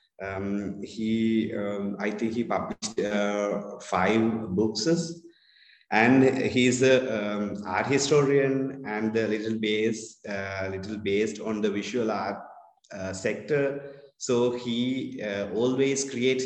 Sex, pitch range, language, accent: male, 105-125 Hz, English, Indian